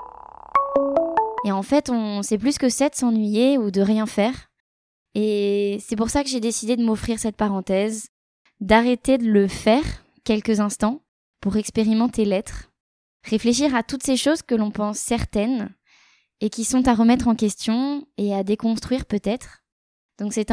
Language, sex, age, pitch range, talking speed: French, female, 20-39, 210-250 Hz, 160 wpm